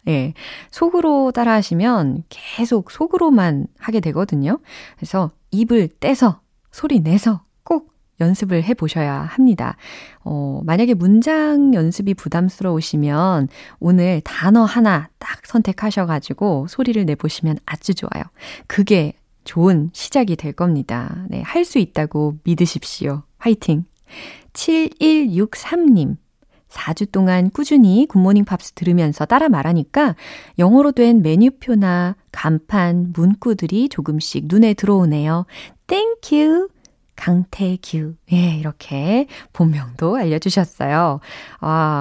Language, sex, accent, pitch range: Korean, female, native, 160-235 Hz